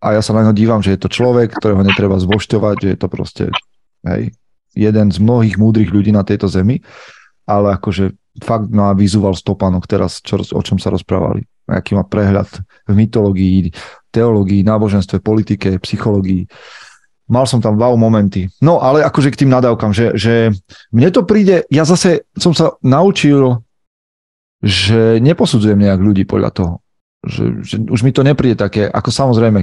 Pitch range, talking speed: 100-115 Hz, 170 wpm